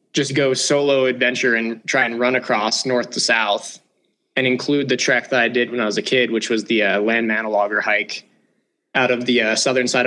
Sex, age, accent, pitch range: male, 20-39, American, 120-140 Hz